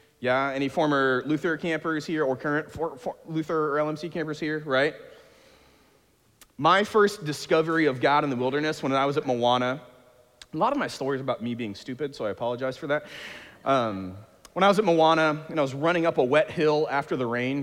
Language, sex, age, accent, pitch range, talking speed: English, male, 40-59, American, 125-165 Hz, 210 wpm